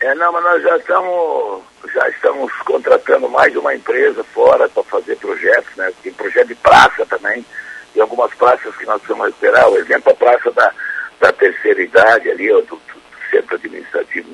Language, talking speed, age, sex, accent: Portuguese, 180 wpm, 60-79, male, Brazilian